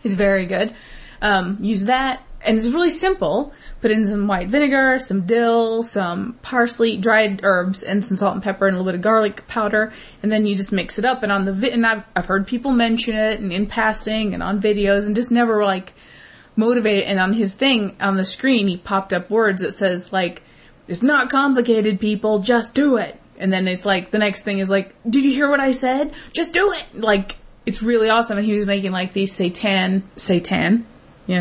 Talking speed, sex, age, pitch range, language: 215 wpm, female, 20-39, 190-230 Hz, English